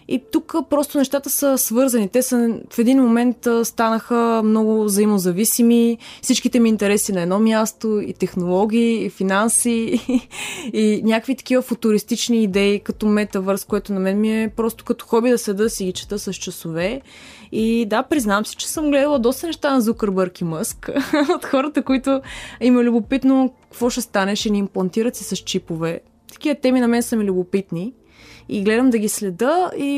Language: Bulgarian